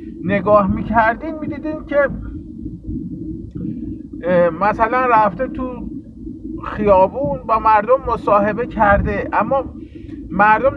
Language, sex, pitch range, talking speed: Persian, male, 180-245 Hz, 80 wpm